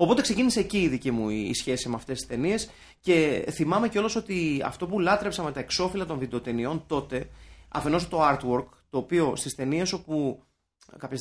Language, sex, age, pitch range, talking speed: Greek, male, 30-49, 125-180 Hz, 180 wpm